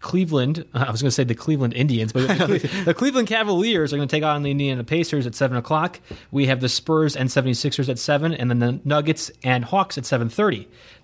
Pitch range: 120-155 Hz